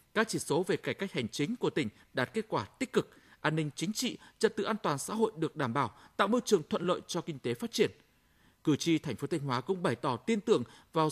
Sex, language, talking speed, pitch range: male, Vietnamese, 270 wpm, 150-220 Hz